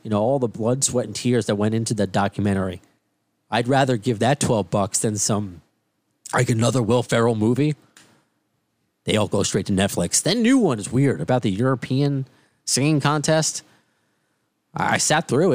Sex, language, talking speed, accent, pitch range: male, English, 180 wpm, American, 110-140 Hz